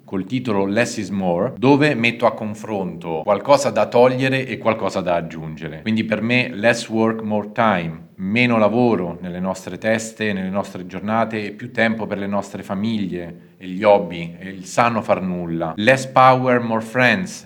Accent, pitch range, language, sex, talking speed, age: native, 100-120 Hz, Italian, male, 170 wpm, 40-59